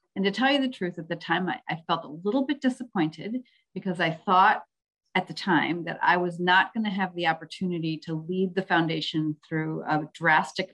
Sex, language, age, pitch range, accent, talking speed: female, English, 40-59, 160-200 Hz, American, 210 wpm